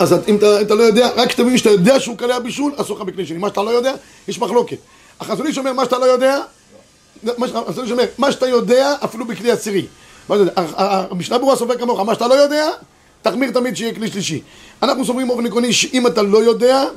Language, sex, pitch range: Hebrew, male, 210-260 Hz